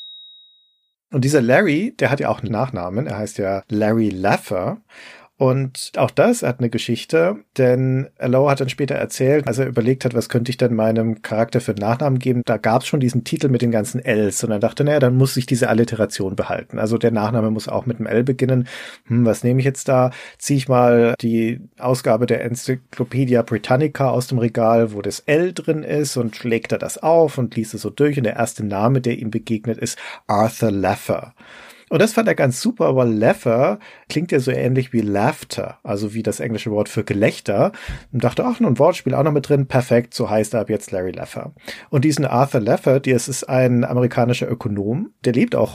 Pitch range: 110-130 Hz